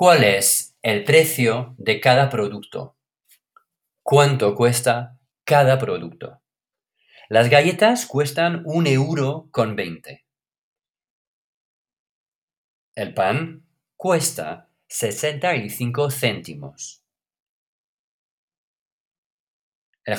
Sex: male